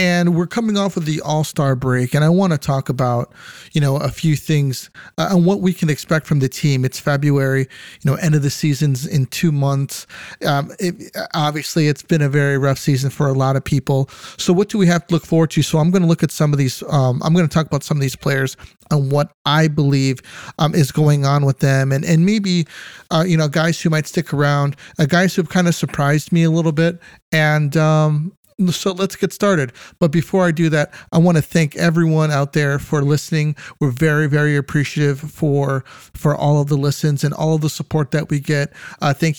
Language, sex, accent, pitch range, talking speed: English, male, American, 140-165 Hz, 230 wpm